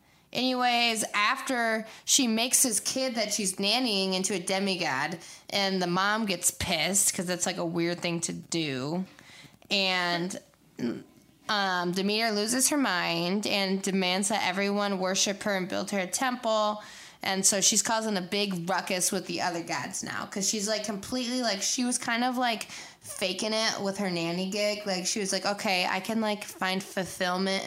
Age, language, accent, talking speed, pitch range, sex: 20-39, English, American, 175 wpm, 185-215 Hz, female